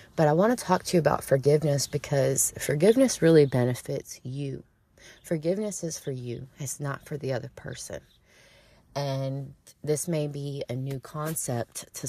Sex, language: female, English